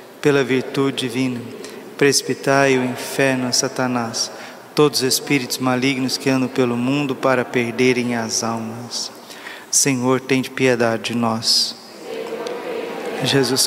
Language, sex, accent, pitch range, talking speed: Portuguese, male, Brazilian, 125-140 Hz, 115 wpm